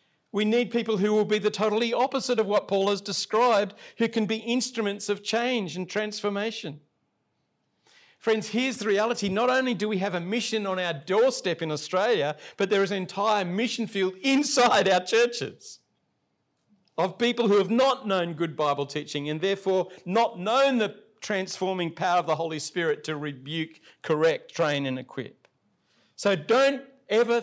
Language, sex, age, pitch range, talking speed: English, male, 50-69, 175-220 Hz, 170 wpm